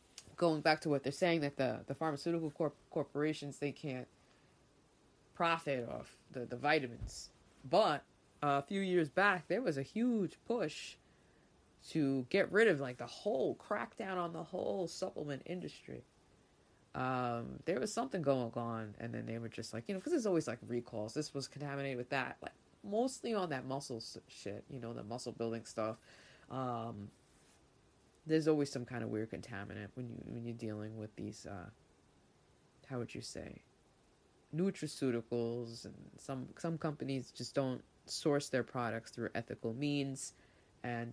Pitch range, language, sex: 115-155 Hz, English, female